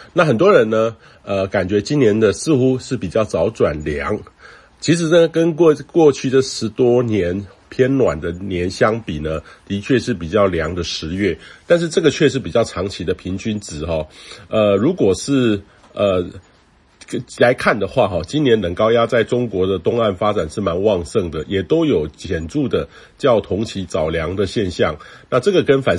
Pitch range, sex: 90-125 Hz, male